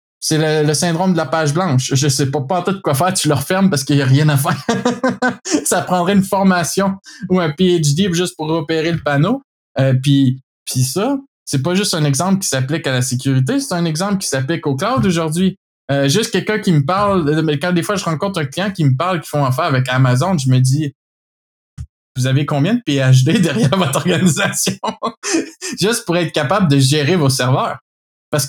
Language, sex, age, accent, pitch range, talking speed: French, male, 20-39, Canadian, 140-190 Hz, 215 wpm